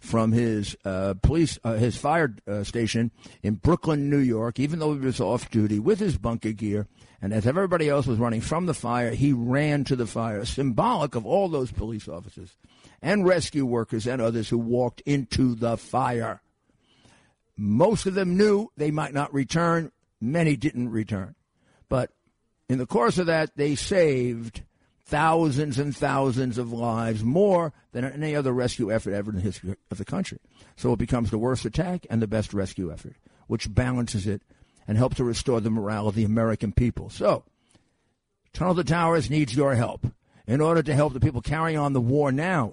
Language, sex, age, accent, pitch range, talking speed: English, male, 60-79, American, 115-150 Hz, 185 wpm